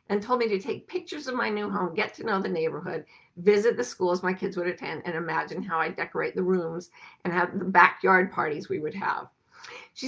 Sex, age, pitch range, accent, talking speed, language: female, 50-69, 185-270 Hz, American, 225 wpm, English